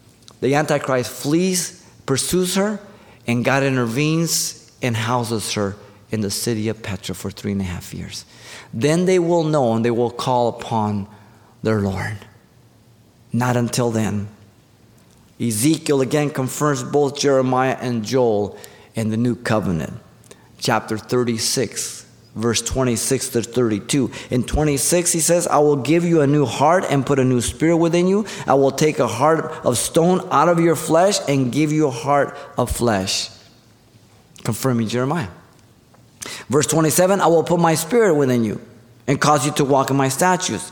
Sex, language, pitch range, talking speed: male, English, 115-155 Hz, 160 wpm